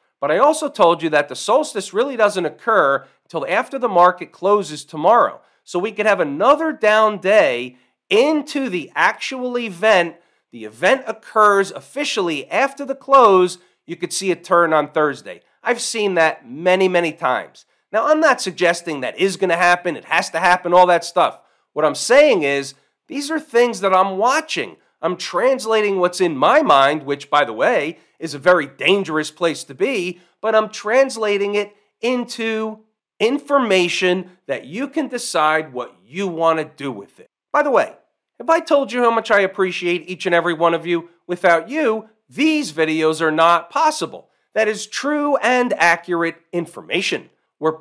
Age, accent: 40-59, American